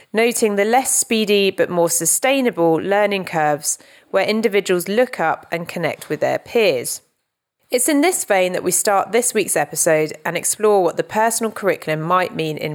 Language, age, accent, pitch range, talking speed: English, 30-49, British, 165-220 Hz, 175 wpm